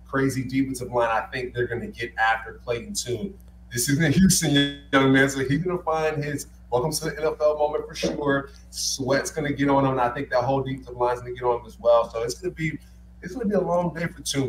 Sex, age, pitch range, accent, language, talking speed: male, 30-49, 120-140 Hz, American, English, 250 wpm